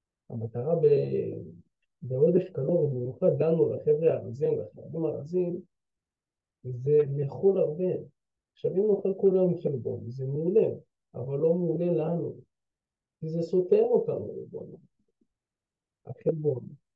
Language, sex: Hebrew, male